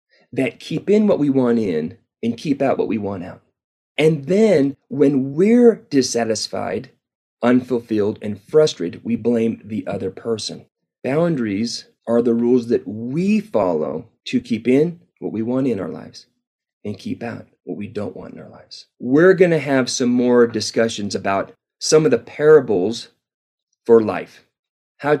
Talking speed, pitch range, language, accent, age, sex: 160 wpm, 115-165 Hz, English, American, 30-49, male